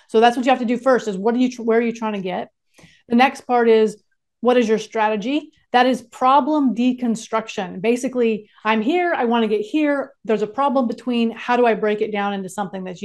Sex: female